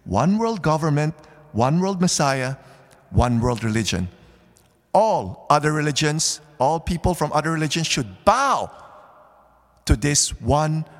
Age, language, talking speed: 50-69, English, 120 wpm